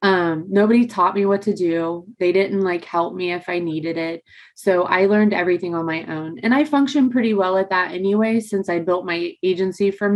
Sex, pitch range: female, 185-220 Hz